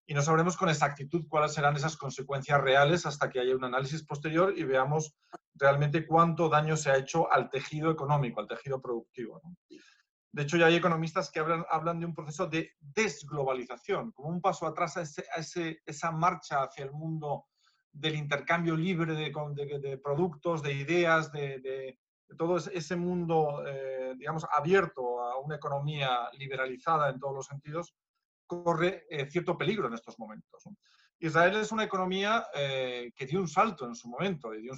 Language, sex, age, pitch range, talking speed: Spanish, male, 40-59, 140-175 Hz, 180 wpm